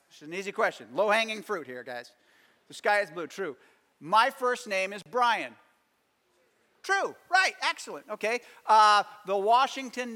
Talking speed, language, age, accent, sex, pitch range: 150 wpm, English, 50-69, American, male, 180-230 Hz